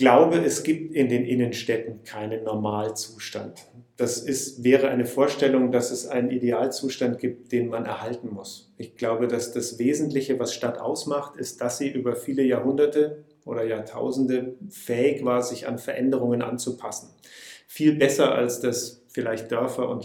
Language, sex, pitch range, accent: German, male, 115-130 Hz, German